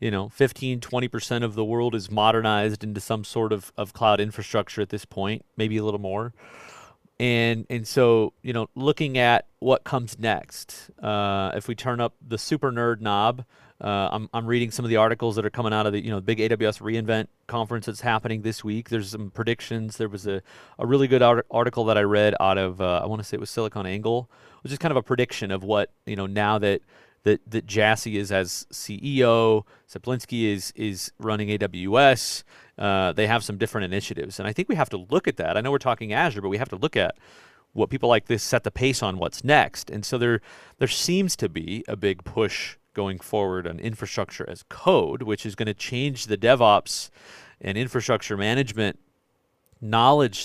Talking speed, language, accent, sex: 210 wpm, English, American, male